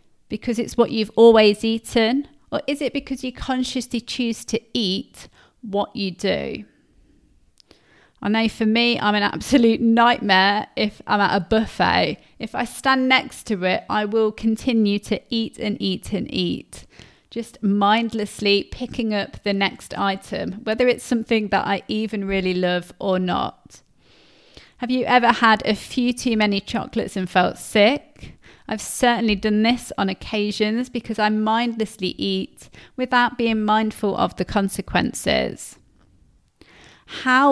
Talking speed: 145 wpm